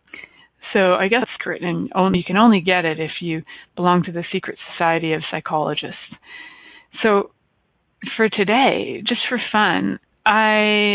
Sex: female